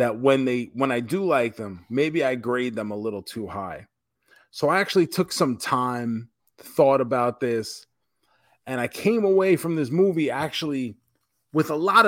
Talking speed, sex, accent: 180 wpm, male, American